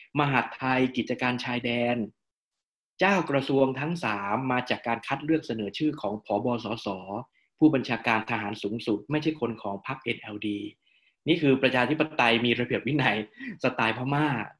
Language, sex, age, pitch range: Thai, male, 20-39, 115-150 Hz